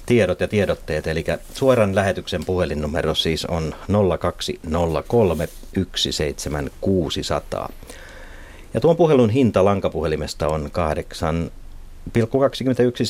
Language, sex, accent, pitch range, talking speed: Finnish, male, native, 80-105 Hz, 80 wpm